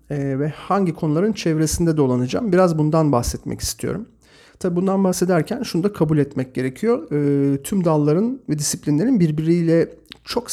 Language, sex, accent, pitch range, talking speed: Turkish, male, native, 145-185 Hz, 140 wpm